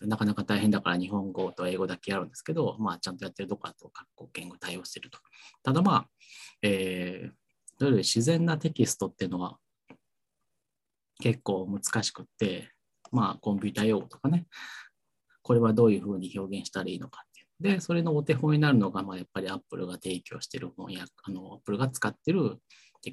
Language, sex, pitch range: Japanese, male, 95-130 Hz